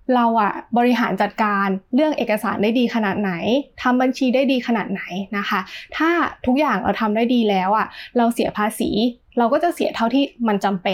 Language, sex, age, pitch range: Thai, female, 20-39, 205-255 Hz